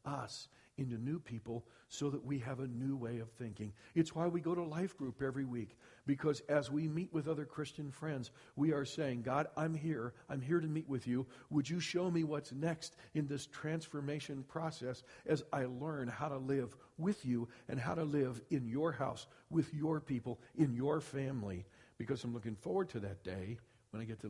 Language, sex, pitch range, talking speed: English, male, 125-155 Hz, 205 wpm